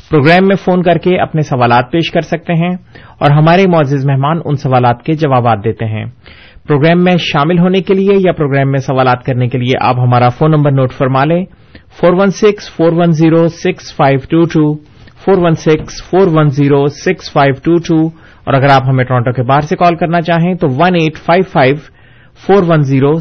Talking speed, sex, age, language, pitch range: 160 wpm, male, 30-49, Urdu, 130-170 Hz